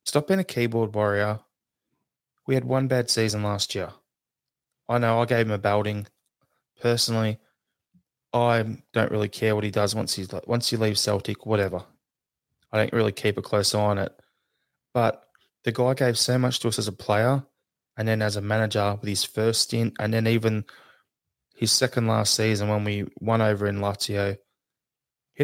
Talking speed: 180 wpm